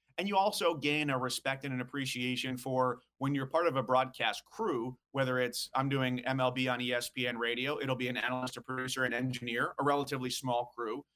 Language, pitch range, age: English, 125-140 Hz, 30-49